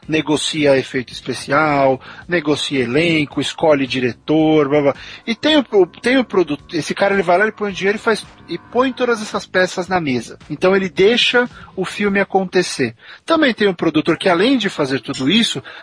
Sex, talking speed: male, 180 wpm